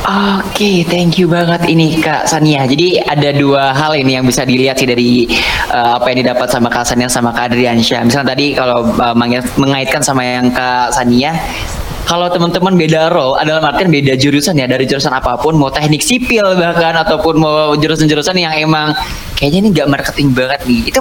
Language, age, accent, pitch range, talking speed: Indonesian, 20-39, native, 130-170 Hz, 185 wpm